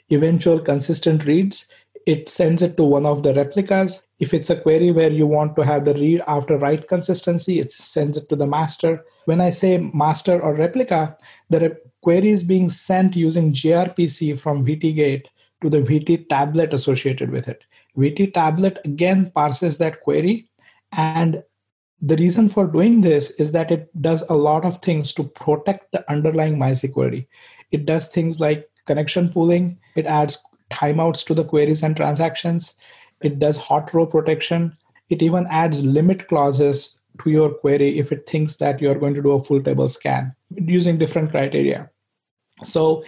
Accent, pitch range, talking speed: Indian, 145-170 Hz, 170 wpm